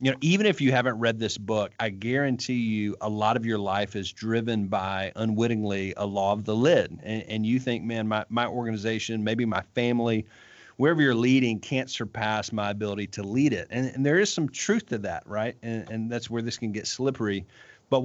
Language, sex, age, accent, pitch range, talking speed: English, male, 40-59, American, 105-125 Hz, 215 wpm